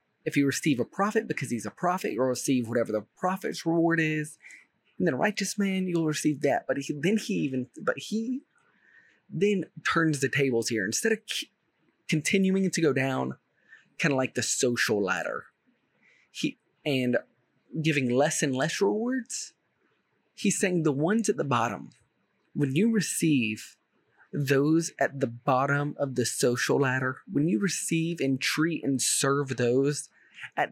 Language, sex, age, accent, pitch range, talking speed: English, male, 30-49, American, 130-170 Hz, 160 wpm